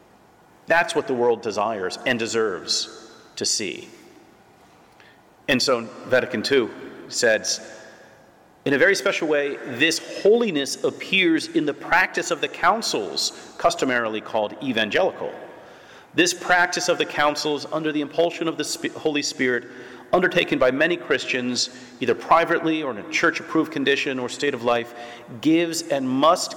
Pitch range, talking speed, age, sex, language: 125-170 Hz, 140 wpm, 40-59, male, English